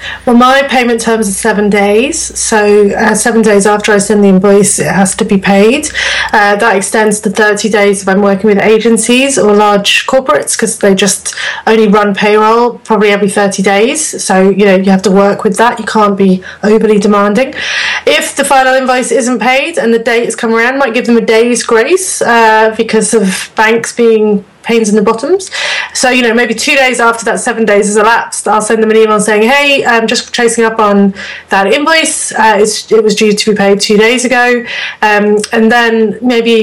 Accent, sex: British, female